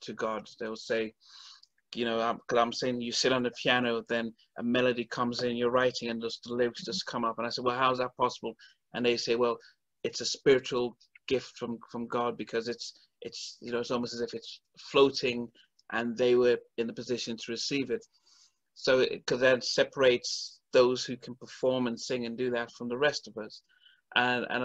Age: 30-49